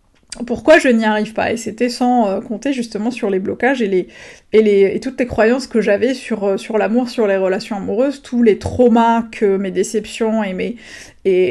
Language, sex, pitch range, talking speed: French, female, 195-235 Hz, 205 wpm